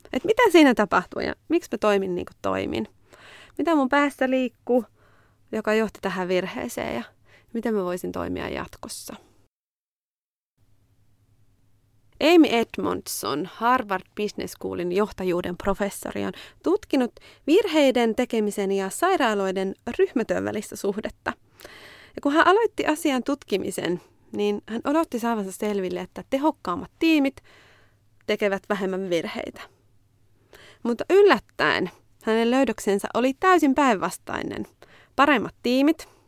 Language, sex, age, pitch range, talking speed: Finnish, female, 30-49, 185-280 Hz, 110 wpm